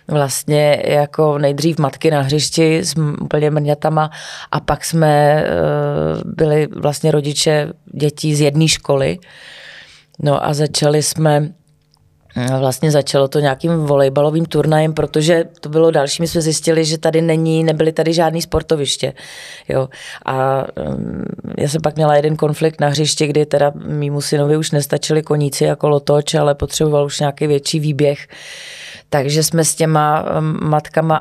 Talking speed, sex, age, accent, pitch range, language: 140 wpm, female, 30-49, native, 145-160 Hz, Czech